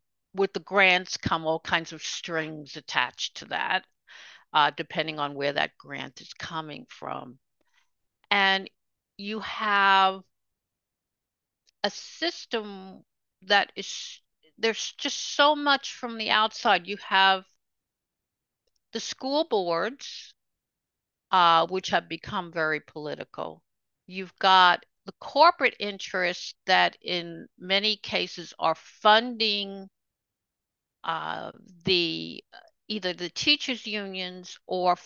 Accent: American